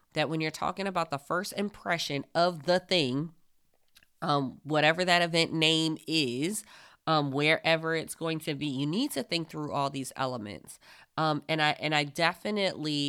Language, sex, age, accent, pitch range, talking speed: English, female, 20-39, American, 140-170 Hz, 170 wpm